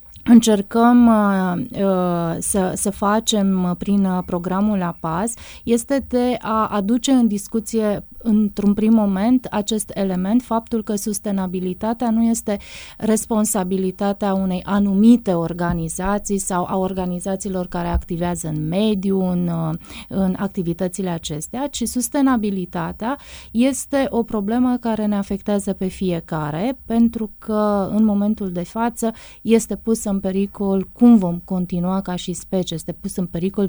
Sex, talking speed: female, 125 wpm